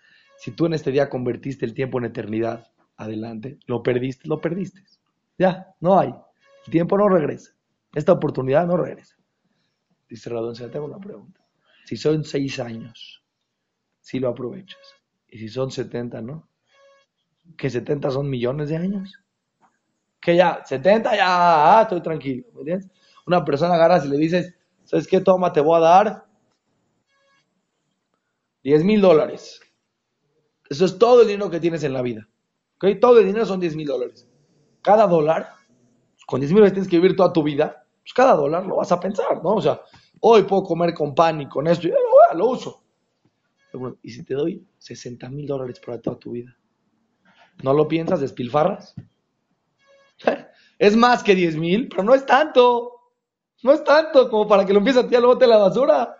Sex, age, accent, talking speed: male, 30-49, Mexican, 180 wpm